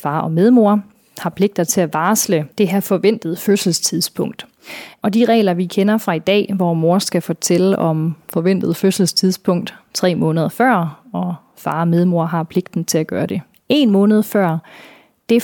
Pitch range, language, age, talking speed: 175-215 Hz, Danish, 30-49, 170 wpm